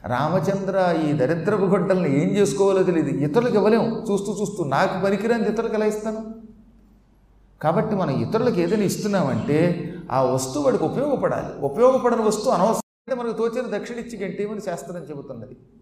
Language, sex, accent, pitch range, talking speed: Telugu, male, native, 150-210 Hz, 125 wpm